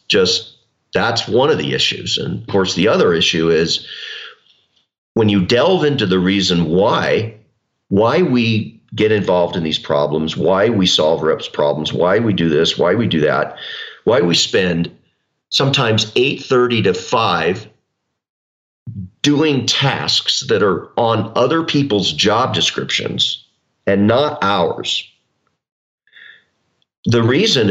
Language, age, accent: English, 50-69, American